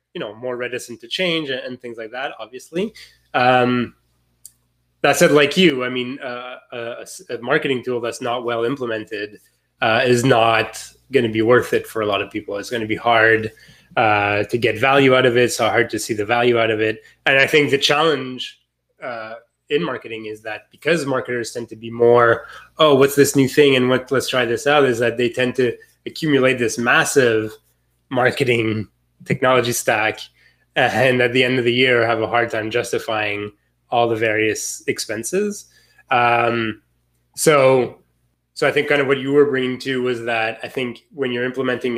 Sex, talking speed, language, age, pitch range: male, 190 wpm, English, 20-39, 110-130 Hz